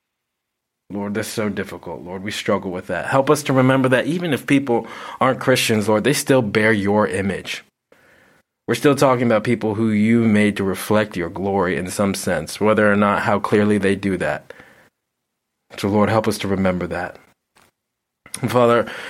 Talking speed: 180 wpm